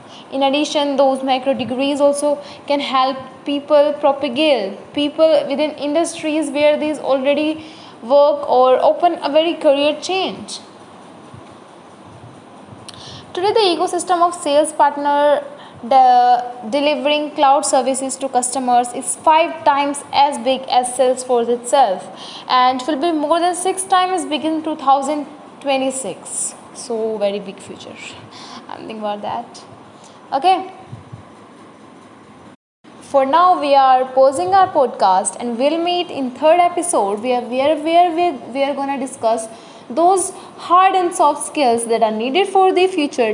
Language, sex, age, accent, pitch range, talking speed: English, female, 10-29, Indian, 260-315 Hz, 135 wpm